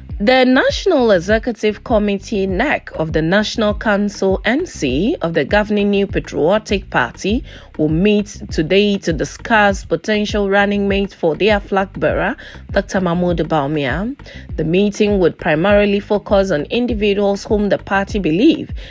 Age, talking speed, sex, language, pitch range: 30-49, 135 wpm, female, English, 170-210 Hz